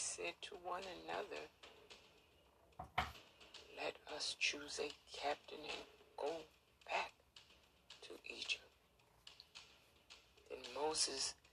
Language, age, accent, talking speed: English, 60-79, American, 85 wpm